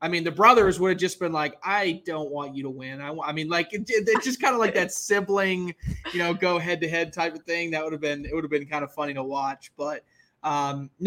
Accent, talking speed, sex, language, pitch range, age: American, 265 wpm, male, English, 150-170 Hz, 20-39